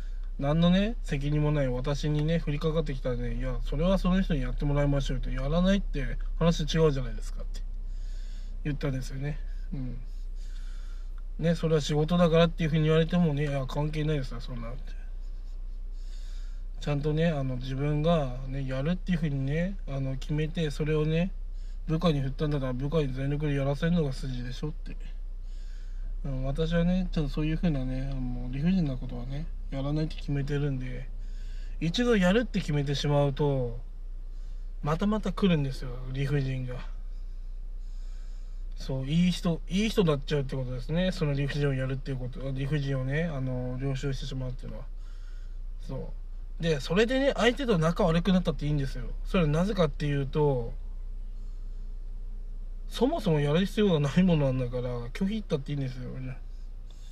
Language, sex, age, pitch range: Japanese, male, 20-39, 120-160 Hz